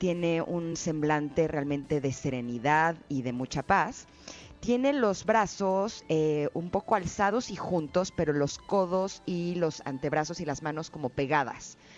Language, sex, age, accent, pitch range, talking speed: Spanish, female, 30-49, Mexican, 150-195 Hz, 150 wpm